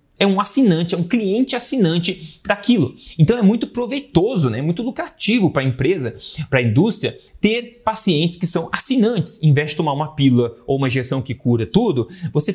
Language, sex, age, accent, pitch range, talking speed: Portuguese, male, 30-49, Brazilian, 135-185 Hz, 190 wpm